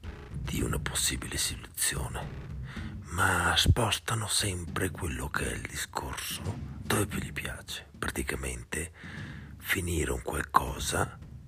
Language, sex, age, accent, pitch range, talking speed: Italian, male, 50-69, native, 75-85 Hz, 105 wpm